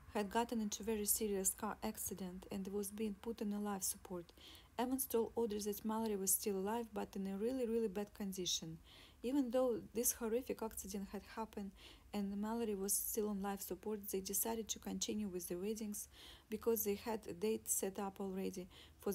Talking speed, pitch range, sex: 190 wpm, 190-225 Hz, female